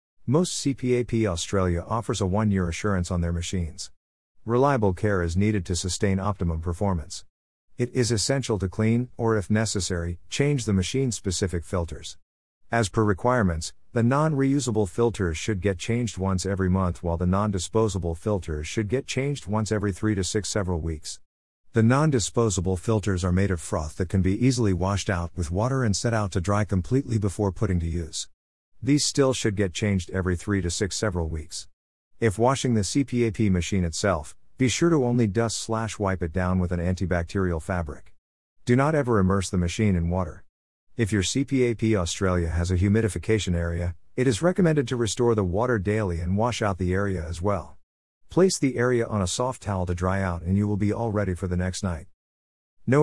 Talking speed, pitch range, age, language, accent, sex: 185 wpm, 90-115 Hz, 50-69, English, American, male